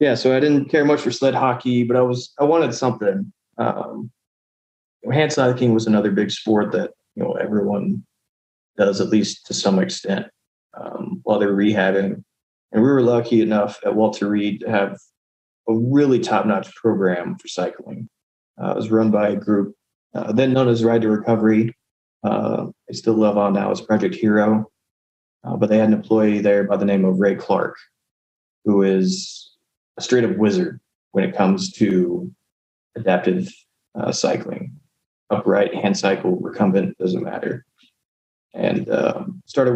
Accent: American